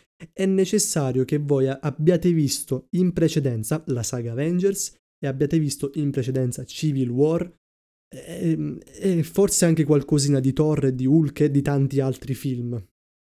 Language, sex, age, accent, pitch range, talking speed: Italian, male, 20-39, native, 125-155 Hz, 145 wpm